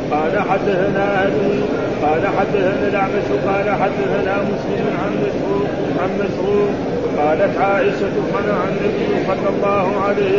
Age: 40-59